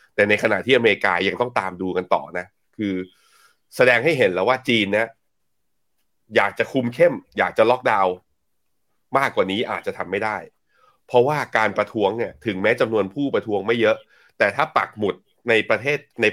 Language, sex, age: Thai, male, 30-49